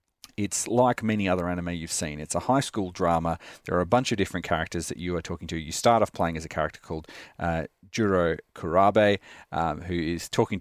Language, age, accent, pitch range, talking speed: English, 40-59, Australian, 85-100 Hz, 220 wpm